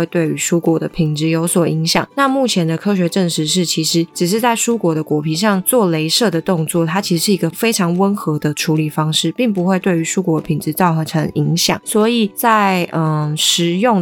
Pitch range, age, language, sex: 160-195 Hz, 20-39, Chinese, female